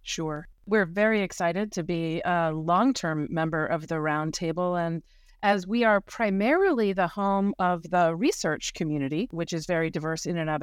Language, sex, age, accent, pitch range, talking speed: English, female, 40-59, American, 165-200 Hz, 170 wpm